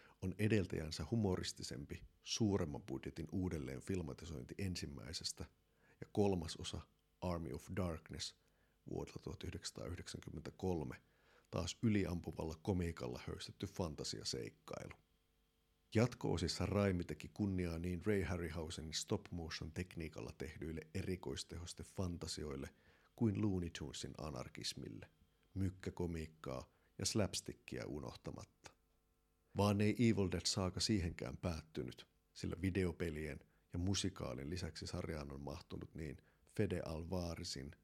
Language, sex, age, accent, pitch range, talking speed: Finnish, male, 50-69, native, 75-95 Hz, 90 wpm